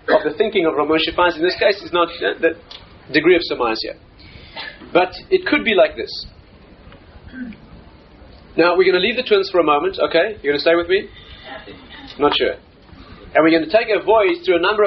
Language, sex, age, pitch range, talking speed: English, male, 30-49, 155-255 Hz, 215 wpm